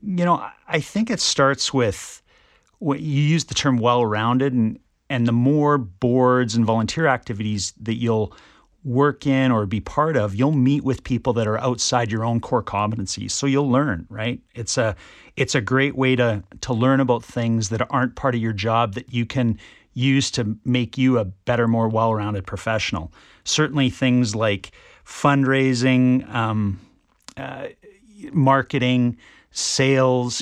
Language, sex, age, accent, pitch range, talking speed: English, male, 40-59, American, 110-135 Hz, 160 wpm